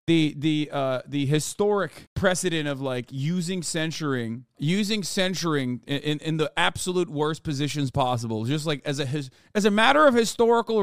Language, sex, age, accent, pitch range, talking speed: English, male, 30-49, American, 140-180 Hz, 160 wpm